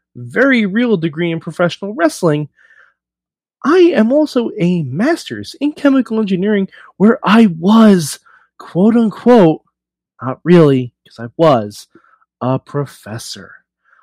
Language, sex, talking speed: English, male, 110 wpm